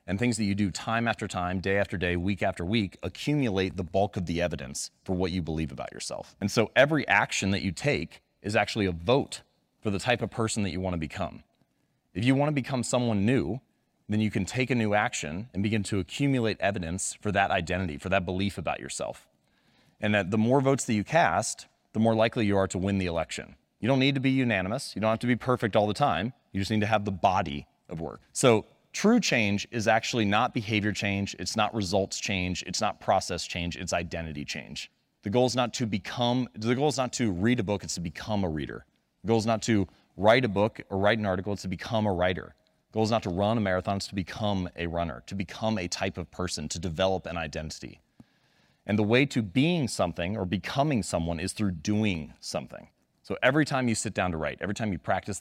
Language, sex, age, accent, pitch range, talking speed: English, male, 30-49, American, 90-115 Hz, 230 wpm